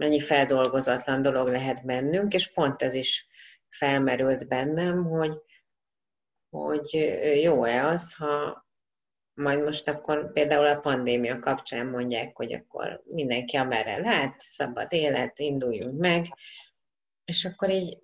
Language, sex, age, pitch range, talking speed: Hungarian, female, 30-49, 130-155 Hz, 120 wpm